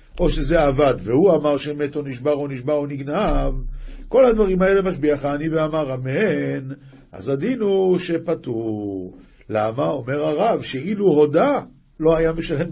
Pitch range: 135-175 Hz